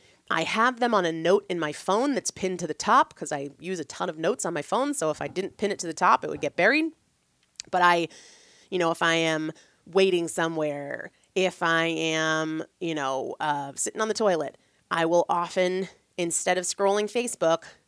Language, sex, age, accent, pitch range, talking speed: English, female, 30-49, American, 165-220 Hz, 210 wpm